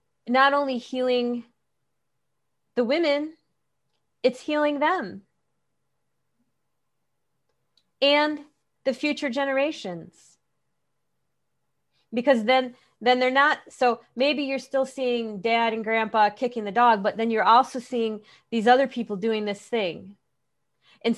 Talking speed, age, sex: 115 wpm, 30-49, female